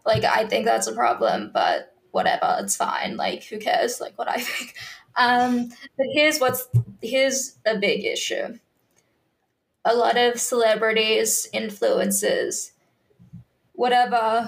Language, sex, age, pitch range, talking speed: English, female, 10-29, 230-305 Hz, 130 wpm